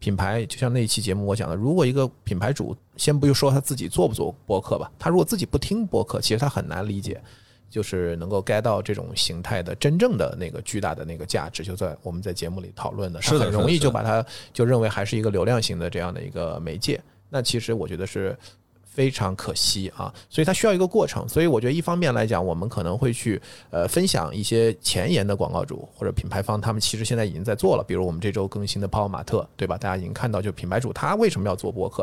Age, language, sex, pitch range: 20-39, Chinese, male, 95-120 Hz